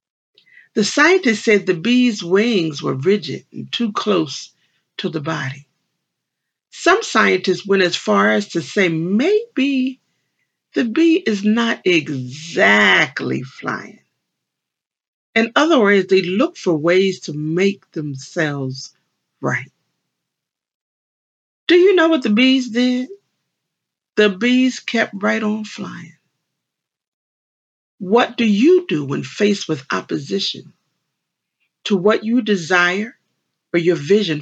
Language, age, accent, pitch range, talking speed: English, 50-69, American, 185-250 Hz, 120 wpm